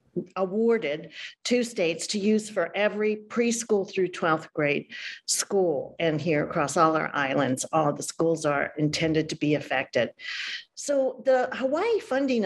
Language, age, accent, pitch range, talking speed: English, 50-69, American, 170-235 Hz, 145 wpm